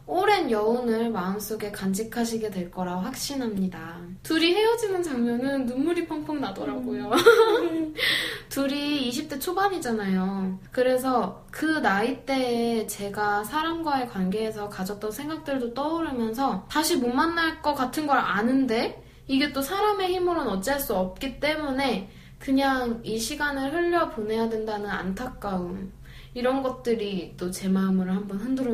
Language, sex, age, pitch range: Korean, female, 20-39, 210-295 Hz